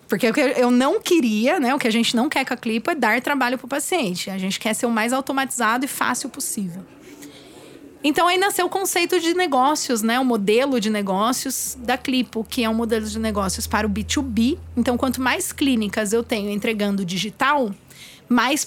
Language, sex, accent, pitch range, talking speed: Portuguese, female, Brazilian, 225-285 Hz, 205 wpm